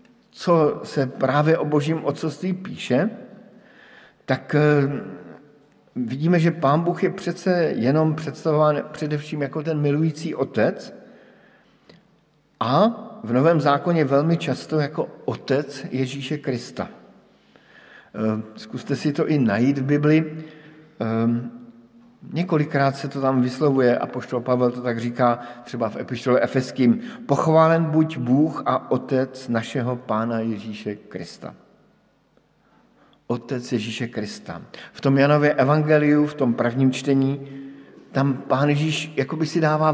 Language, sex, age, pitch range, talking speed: Slovak, male, 50-69, 130-160 Hz, 115 wpm